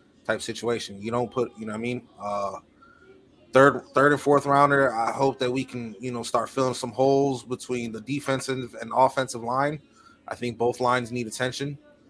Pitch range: 115-135 Hz